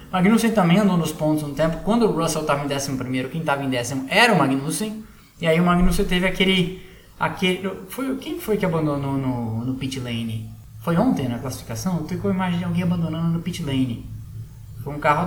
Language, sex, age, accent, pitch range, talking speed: Portuguese, male, 20-39, Brazilian, 135-185 Hz, 215 wpm